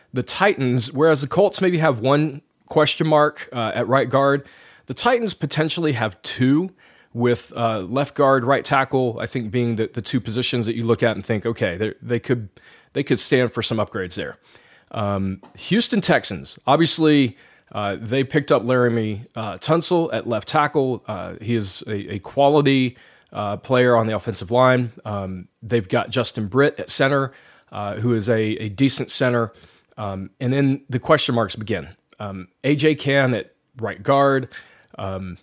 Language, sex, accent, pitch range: English, male, American, 115-145 Hz